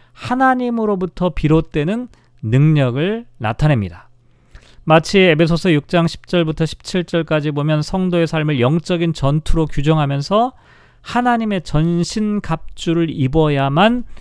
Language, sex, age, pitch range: Korean, male, 40-59, 125-180 Hz